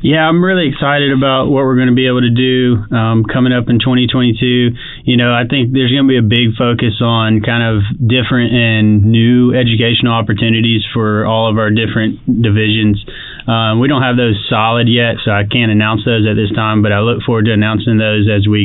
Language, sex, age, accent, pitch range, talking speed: English, male, 20-39, American, 105-120 Hz, 215 wpm